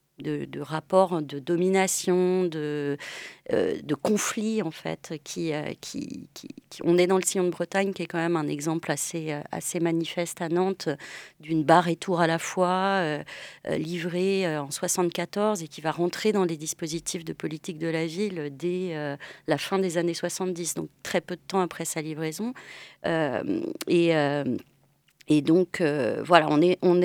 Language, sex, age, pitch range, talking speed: French, female, 30-49, 155-185 Hz, 180 wpm